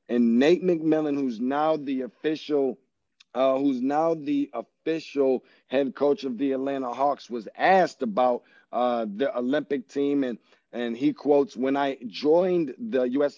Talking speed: 150 wpm